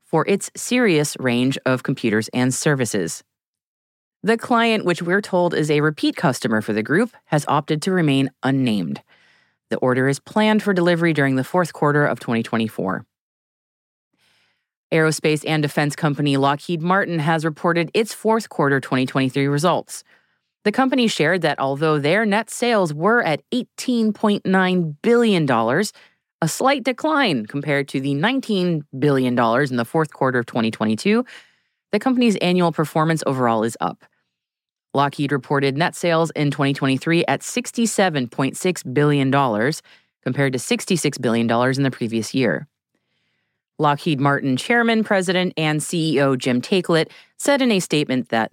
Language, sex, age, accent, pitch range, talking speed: English, female, 30-49, American, 135-190 Hz, 140 wpm